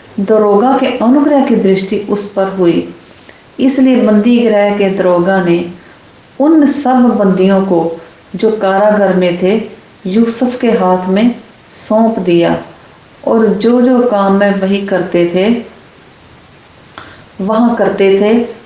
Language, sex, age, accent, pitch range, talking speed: English, female, 50-69, Indian, 190-235 Hz, 120 wpm